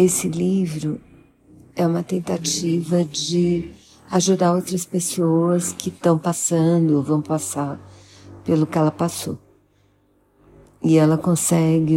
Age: 50-69